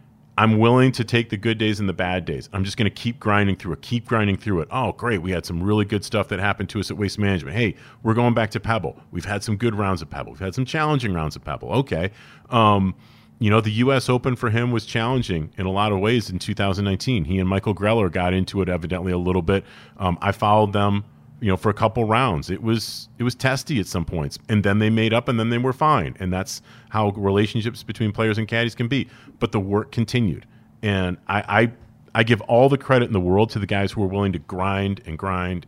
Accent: American